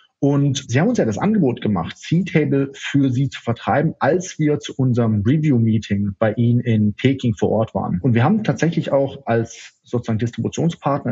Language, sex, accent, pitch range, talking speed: German, male, German, 115-155 Hz, 180 wpm